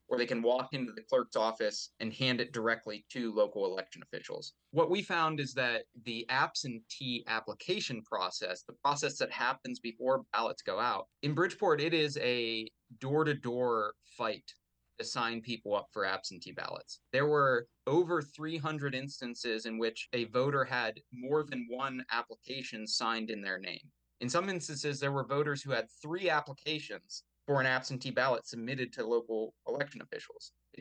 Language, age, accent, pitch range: English, 20-39, American, 115-145 Hz